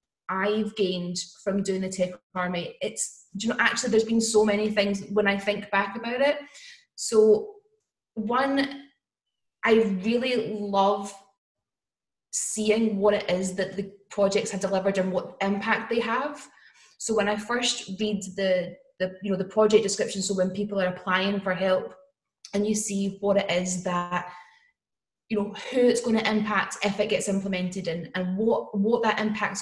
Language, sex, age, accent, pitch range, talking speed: English, female, 10-29, British, 190-220 Hz, 170 wpm